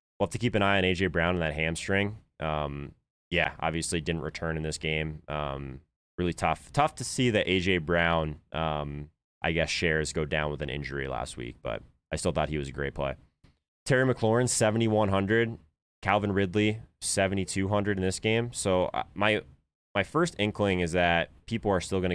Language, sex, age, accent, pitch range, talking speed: English, male, 20-39, American, 75-95 Hz, 185 wpm